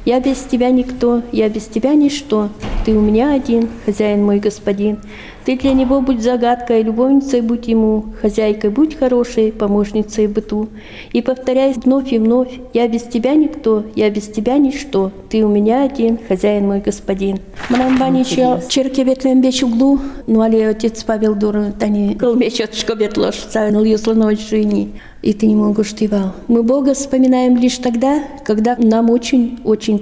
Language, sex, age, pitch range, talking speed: Russian, female, 40-59, 215-255 Hz, 150 wpm